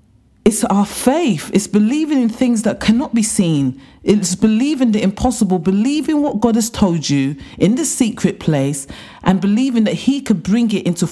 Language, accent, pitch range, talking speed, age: English, British, 170-245 Hz, 180 wpm, 40-59